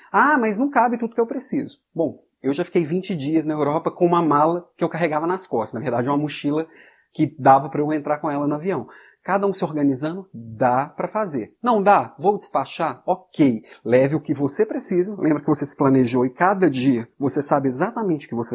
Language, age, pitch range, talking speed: Portuguese, 30-49, 135-195 Hz, 220 wpm